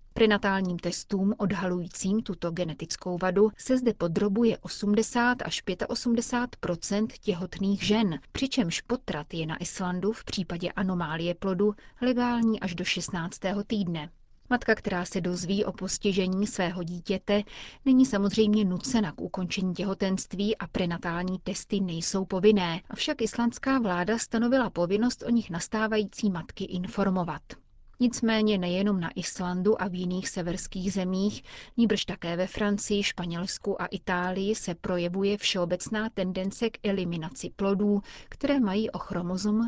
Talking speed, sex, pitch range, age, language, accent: 125 wpm, female, 180-220 Hz, 30-49, Czech, native